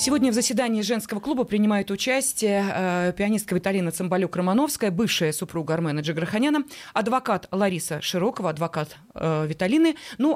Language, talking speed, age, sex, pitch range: Russian, 130 wpm, 20-39, female, 180-240 Hz